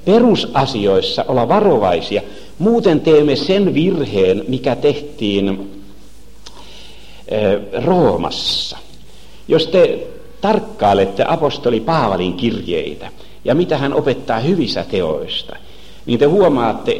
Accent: native